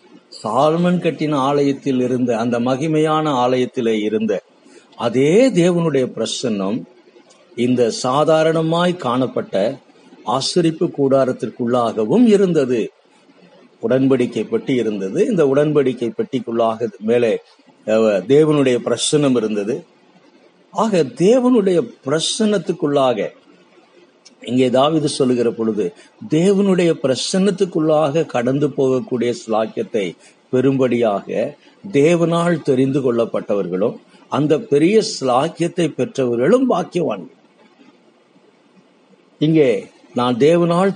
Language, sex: Tamil, male